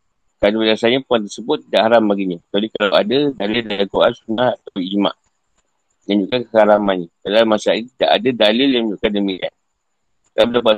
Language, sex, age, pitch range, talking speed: Malay, male, 50-69, 105-125 Hz, 160 wpm